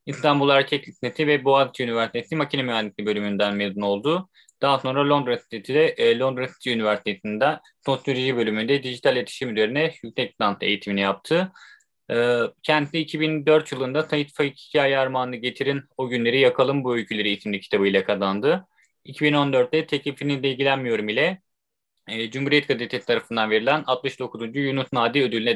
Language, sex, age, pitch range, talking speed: Turkish, male, 30-49, 120-155 Hz, 135 wpm